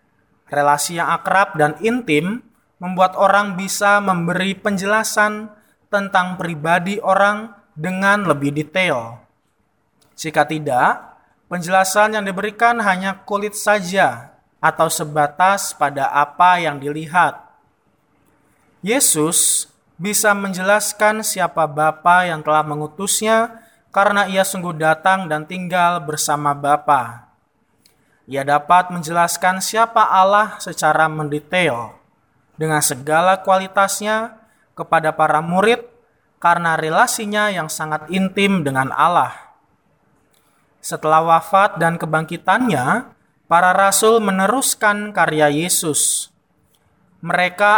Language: Indonesian